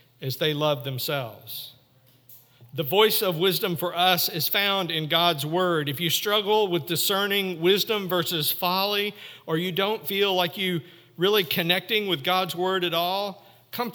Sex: male